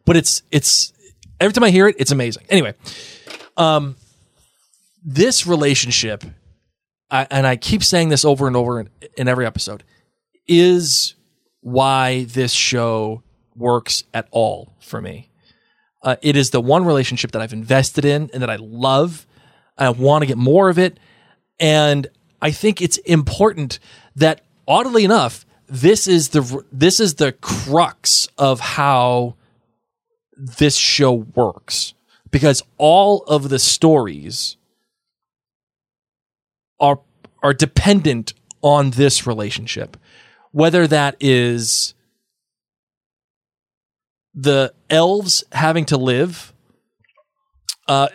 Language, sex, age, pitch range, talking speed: English, male, 20-39, 125-165 Hz, 120 wpm